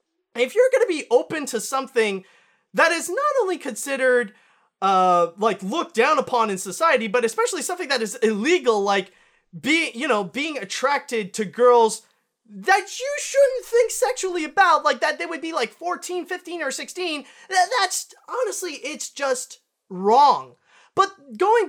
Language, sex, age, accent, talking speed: English, male, 20-39, American, 160 wpm